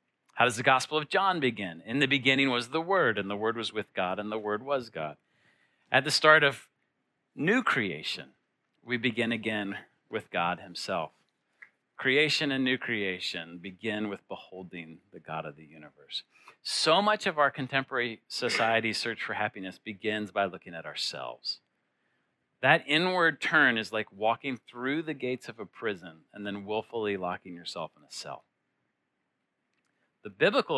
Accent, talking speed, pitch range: American, 165 wpm, 105-135 Hz